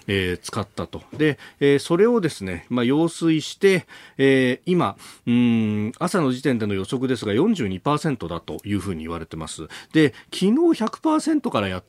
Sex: male